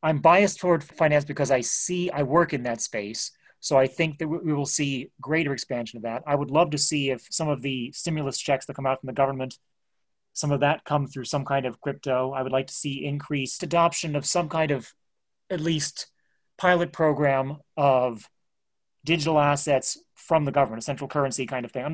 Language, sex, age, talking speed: English, male, 30-49, 210 wpm